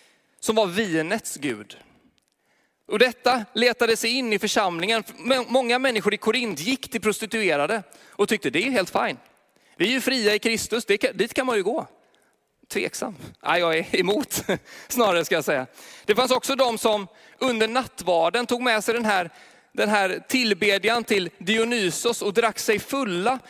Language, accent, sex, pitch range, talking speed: Swedish, native, male, 210-250 Hz, 170 wpm